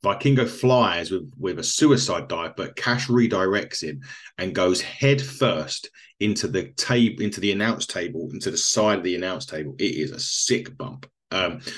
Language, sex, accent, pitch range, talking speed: English, male, British, 95-135 Hz, 180 wpm